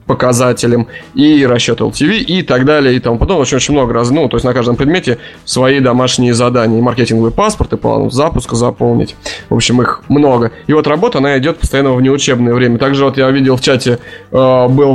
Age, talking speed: 20-39, 195 wpm